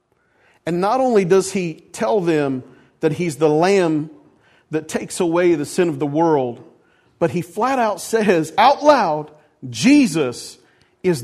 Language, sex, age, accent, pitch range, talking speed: English, male, 40-59, American, 160-235 Hz, 150 wpm